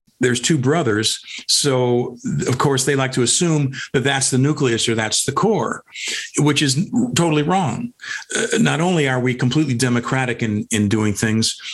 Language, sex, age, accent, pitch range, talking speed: English, male, 50-69, American, 115-150 Hz, 170 wpm